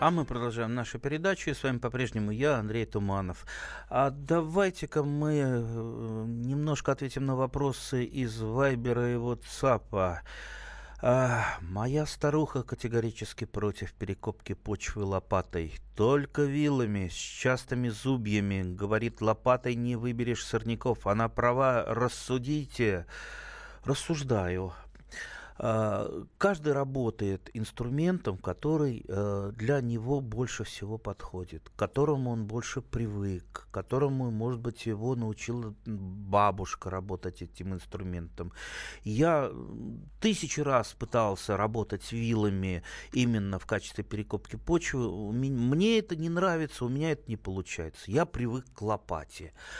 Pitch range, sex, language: 100-135 Hz, male, Russian